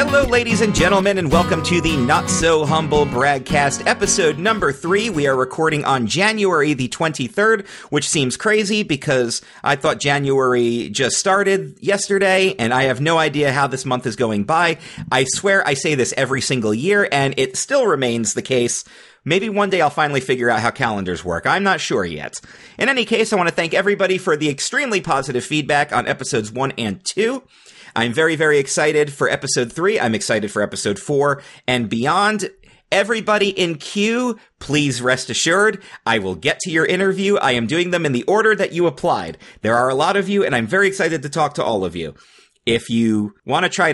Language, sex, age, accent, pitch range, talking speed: English, male, 40-59, American, 130-195 Hz, 195 wpm